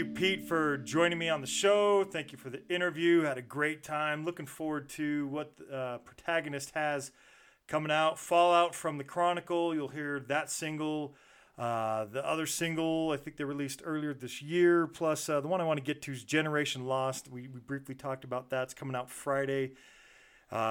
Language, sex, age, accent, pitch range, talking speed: English, male, 40-59, American, 135-160 Hz, 205 wpm